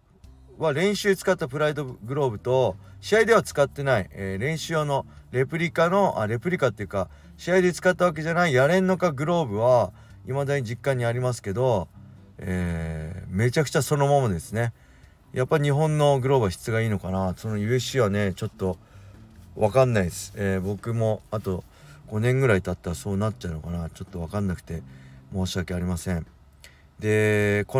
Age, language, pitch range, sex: 40-59, Japanese, 95-135 Hz, male